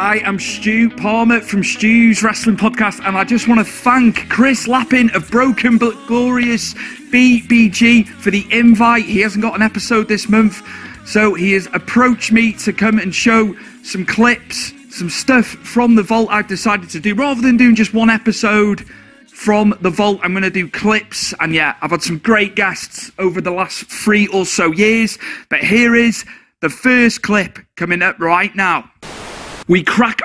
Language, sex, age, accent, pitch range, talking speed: English, male, 40-59, British, 200-235 Hz, 180 wpm